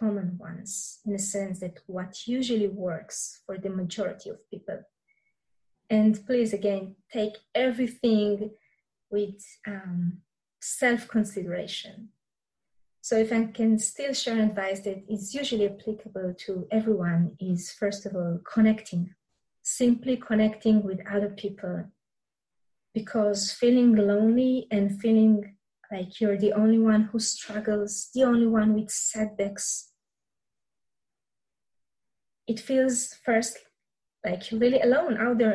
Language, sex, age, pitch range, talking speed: English, female, 20-39, 200-235 Hz, 120 wpm